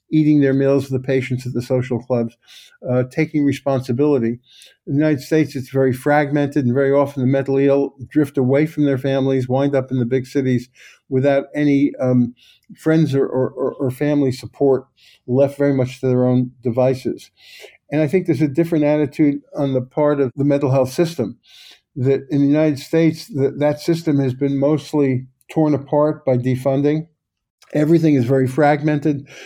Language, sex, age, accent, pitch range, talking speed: English, male, 50-69, American, 130-150 Hz, 175 wpm